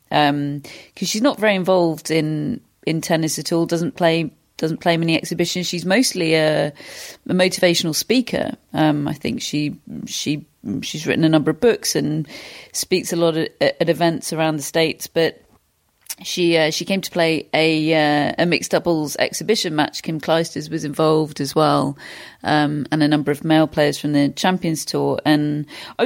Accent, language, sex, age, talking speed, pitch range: British, English, female, 40-59, 175 wpm, 155-180 Hz